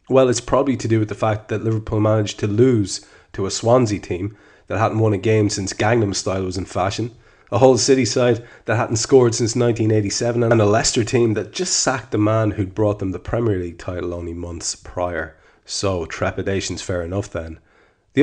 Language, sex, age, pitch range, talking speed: English, male, 30-49, 95-115 Hz, 205 wpm